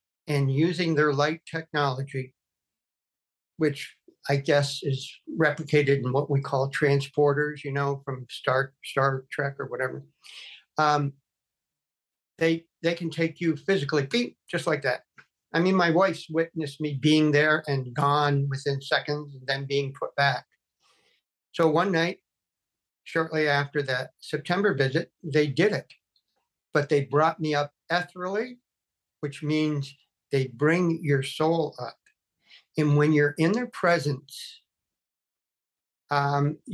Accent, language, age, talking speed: American, English, 50-69, 135 wpm